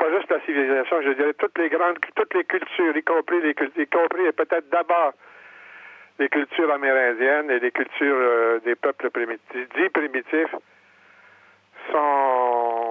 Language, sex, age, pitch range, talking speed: French, male, 60-79, 130-160 Hz, 155 wpm